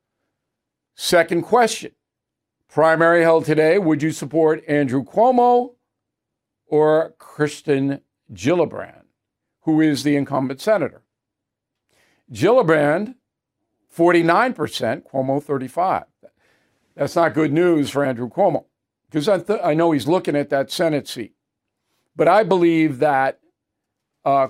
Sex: male